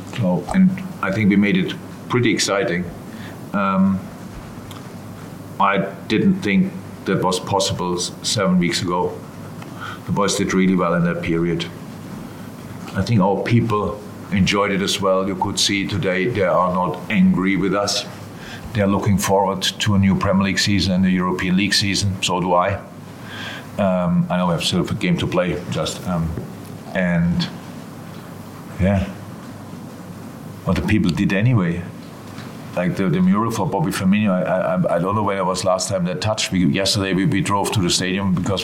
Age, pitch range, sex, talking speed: 50-69, 90-100 Hz, male, 170 wpm